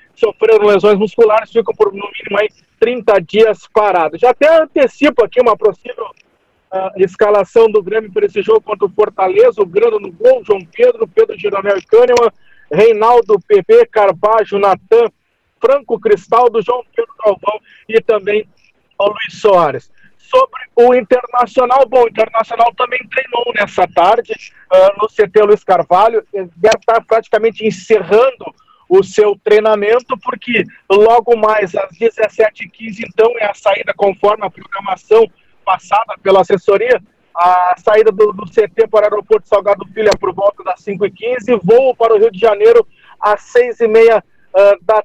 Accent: Brazilian